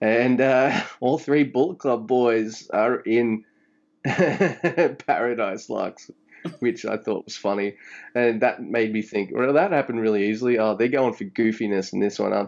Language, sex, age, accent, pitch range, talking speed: English, male, 20-39, Australian, 100-125 Hz, 170 wpm